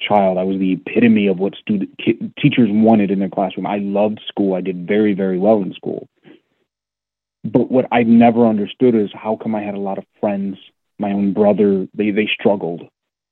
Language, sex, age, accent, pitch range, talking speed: English, male, 30-49, American, 100-130 Hz, 200 wpm